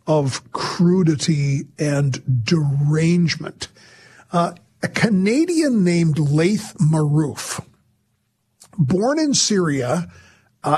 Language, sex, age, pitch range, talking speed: English, male, 50-69, 150-195 Hz, 80 wpm